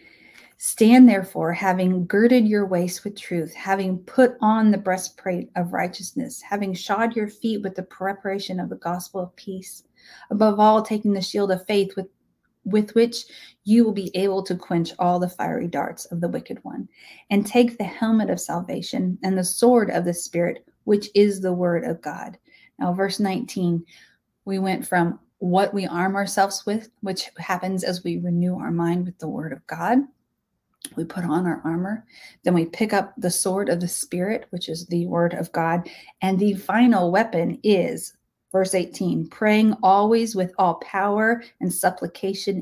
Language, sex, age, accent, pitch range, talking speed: English, female, 30-49, American, 180-210 Hz, 175 wpm